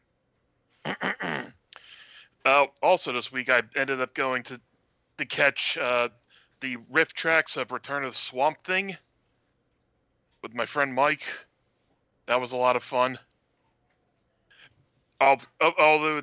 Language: English